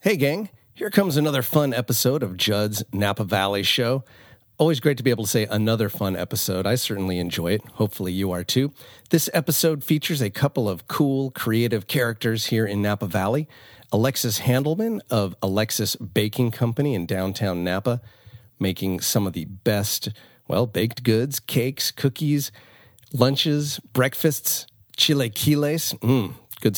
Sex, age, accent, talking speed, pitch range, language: male, 40-59, American, 150 wpm, 100-135 Hz, English